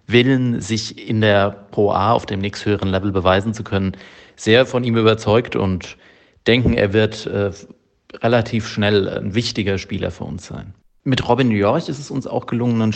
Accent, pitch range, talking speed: German, 100-115 Hz, 185 wpm